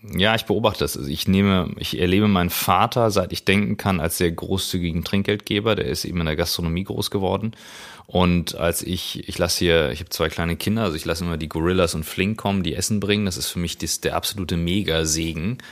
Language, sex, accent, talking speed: German, male, German, 225 wpm